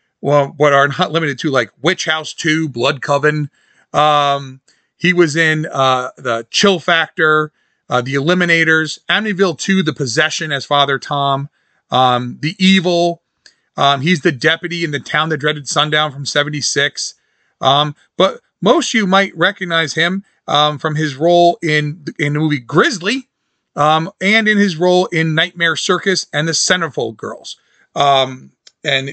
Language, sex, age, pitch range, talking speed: English, male, 40-59, 140-175 Hz, 155 wpm